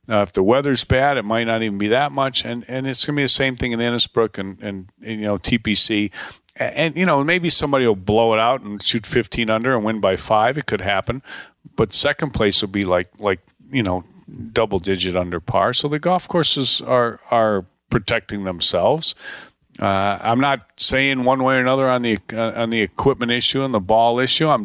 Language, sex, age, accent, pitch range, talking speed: English, male, 50-69, American, 105-135 Hz, 220 wpm